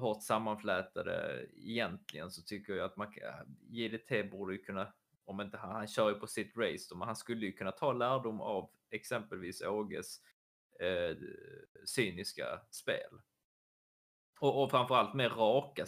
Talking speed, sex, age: 155 wpm, male, 20-39